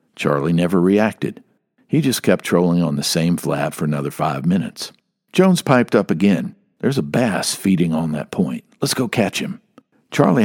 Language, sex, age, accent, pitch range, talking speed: English, male, 60-79, American, 85-120 Hz, 180 wpm